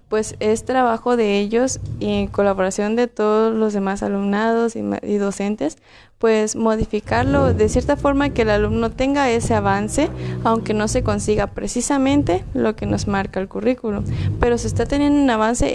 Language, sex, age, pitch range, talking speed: Spanish, female, 20-39, 205-235 Hz, 170 wpm